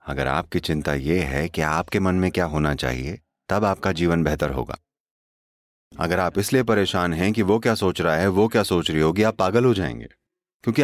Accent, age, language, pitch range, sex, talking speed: Indian, 30-49, English, 80-125 Hz, male, 210 wpm